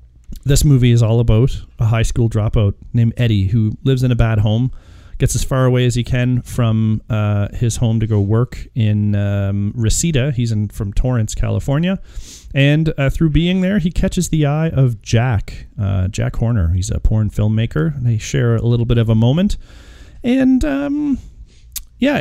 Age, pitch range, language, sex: 40-59, 110-150 Hz, English, male